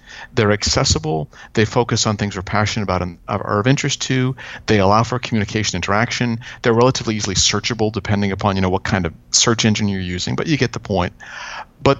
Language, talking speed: English, 200 wpm